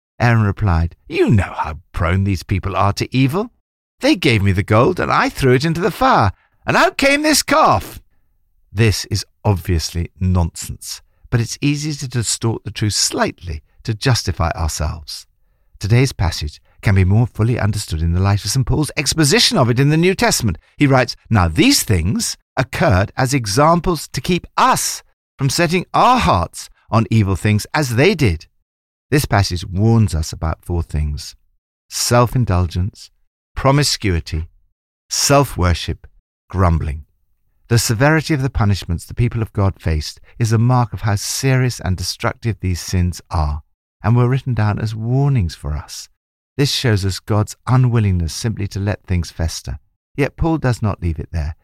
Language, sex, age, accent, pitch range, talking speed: English, male, 60-79, British, 85-130 Hz, 165 wpm